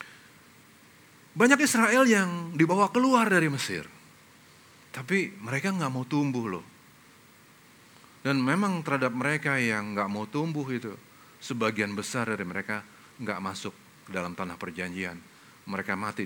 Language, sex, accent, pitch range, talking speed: Indonesian, male, native, 110-150 Hz, 120 wpm